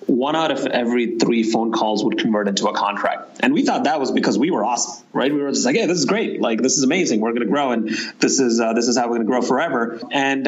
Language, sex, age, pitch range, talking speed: English, male, 30-49, 110-125 Hz, 300 wpm